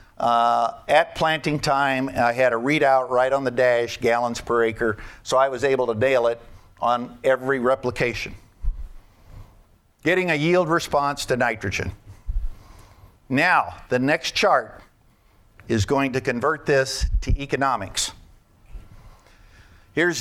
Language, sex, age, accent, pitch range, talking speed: English, male, 50-69, American, 110-160 Hz, 130 wpm